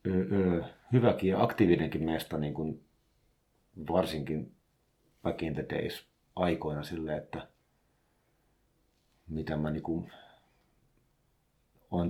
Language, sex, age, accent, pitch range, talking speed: Finnish, male, 50-69, native, 80-95 Hz, 80 wpm